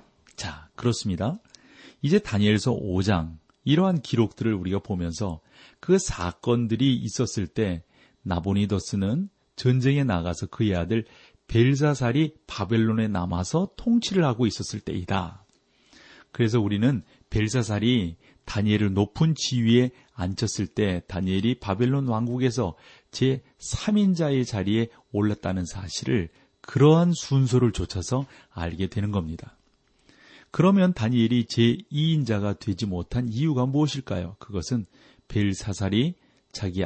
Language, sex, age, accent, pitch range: Korean, male, 40-59, native, 100-130 Hz